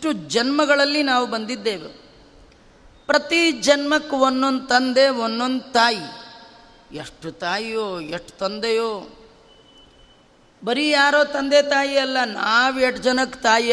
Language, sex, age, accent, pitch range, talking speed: Kannada, female, 30-49, native, 195-260 Hz, 100 wpm